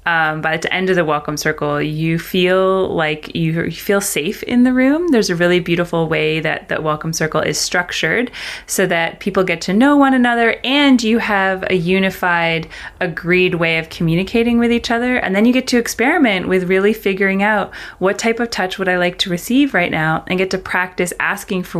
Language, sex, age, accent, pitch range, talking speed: English, female, 30-49, American, 160-195 Hz, 210 wpm